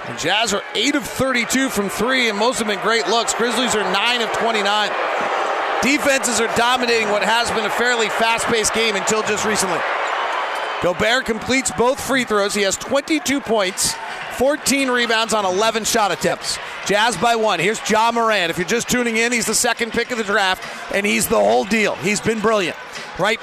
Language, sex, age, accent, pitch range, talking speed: English, male, 40-59, American, 210-240 Hz, 190 wpm